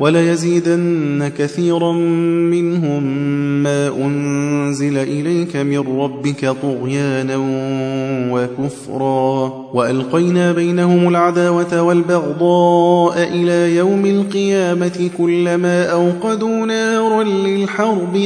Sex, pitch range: male, 130-170 Hz